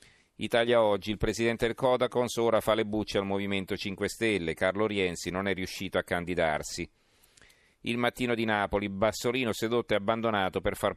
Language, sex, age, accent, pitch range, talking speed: Italian, male, 40-59, native, 95-115 Hz, 170 wpm